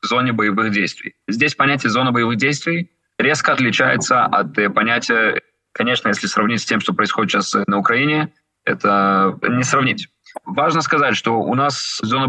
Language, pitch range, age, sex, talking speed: Russian, 115-145 Hz, 20-39, male, 150 wpm